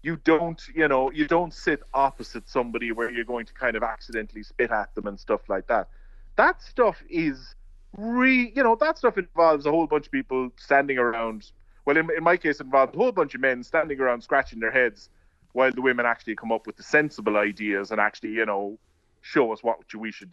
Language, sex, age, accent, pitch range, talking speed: English, male, 30-49, Irish, 105-150 Hz, 220 wpm